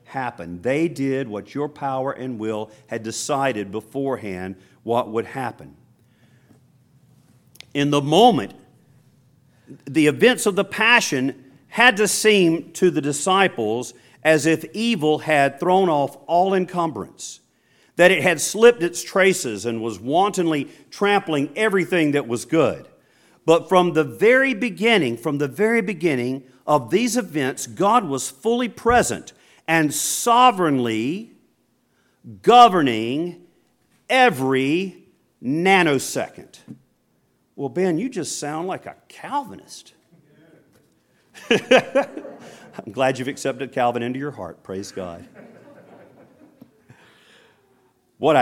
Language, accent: English, American